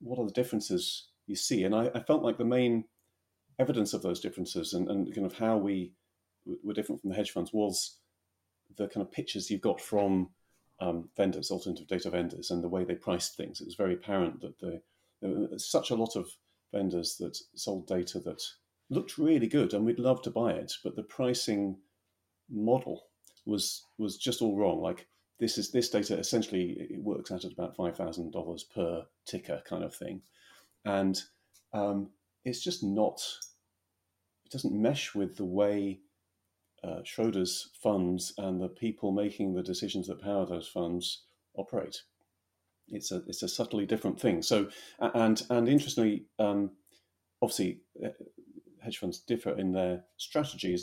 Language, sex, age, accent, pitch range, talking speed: English, male, 40-59, British, 90-110 Hz, 170 wpm